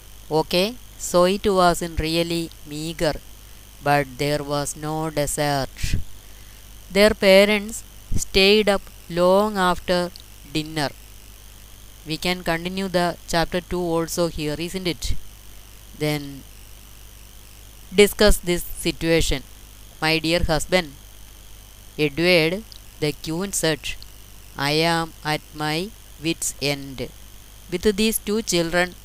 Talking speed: 105 wpm